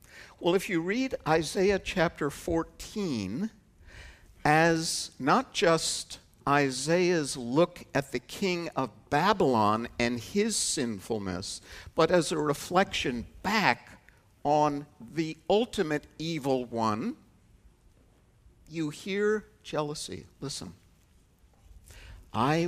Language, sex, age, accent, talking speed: English, male, 60-79, American, 95 wpm